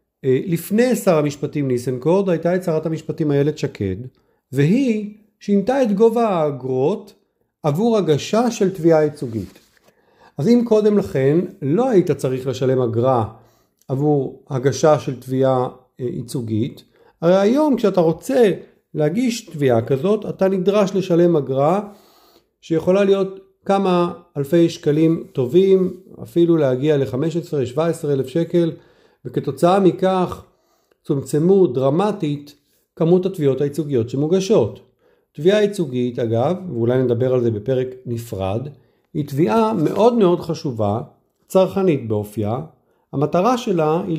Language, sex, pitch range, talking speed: Hebrew, male, 135-190 Hz, 115 wpm